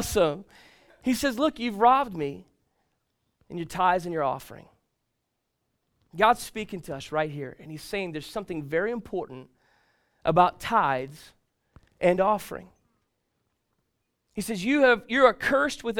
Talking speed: 130 wpm